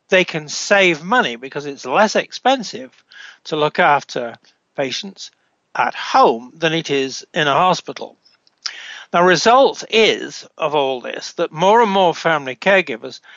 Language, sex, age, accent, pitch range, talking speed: English, male, 60-79, British, 150-205 Hz, 145 wpm